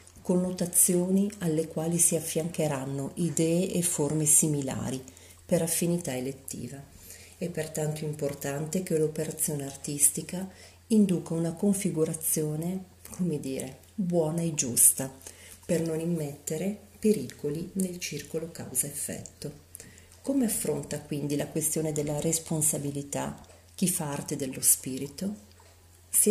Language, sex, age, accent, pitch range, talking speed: Italian, female, 40-59, native, 135-175 Hz, 105 wpm